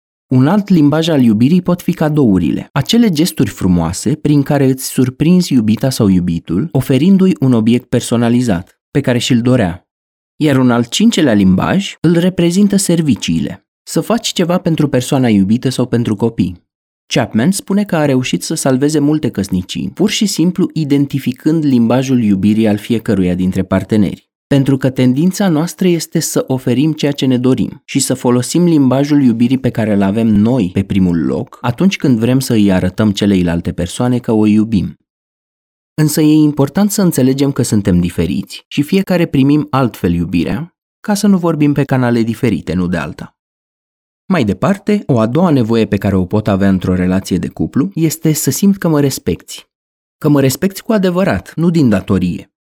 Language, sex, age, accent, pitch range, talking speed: Romanian, male, 30-49, native, 105-160 Hz, 170 wpm